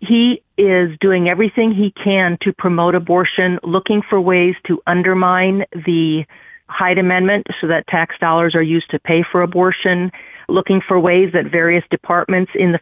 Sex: female